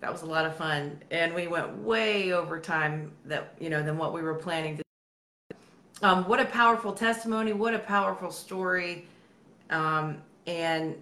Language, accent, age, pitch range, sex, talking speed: English, American, 30-49, 170-205 Hz, female, 170 wpm